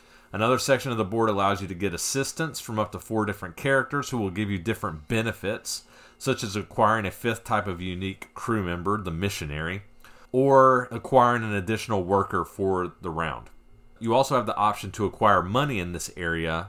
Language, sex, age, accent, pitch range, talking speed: English, male, 40-59, American, 90-115 Hz, 190 wpm